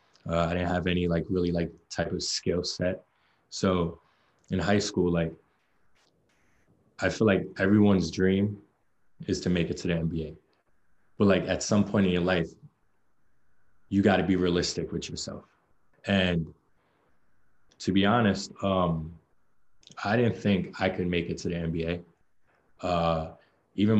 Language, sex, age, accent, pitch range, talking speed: English, male, 20-39, American, 85-95 Hz, 150 wpm